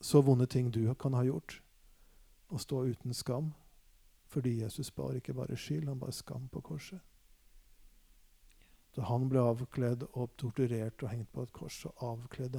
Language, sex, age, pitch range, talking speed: English, male, 50-69, 120-140 Hz, 165 wpm